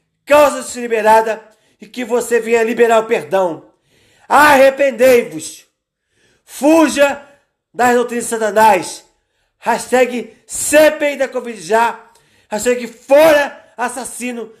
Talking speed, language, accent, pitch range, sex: 90 wpm, Portuguese, Brazilian, 225-270 Hz, male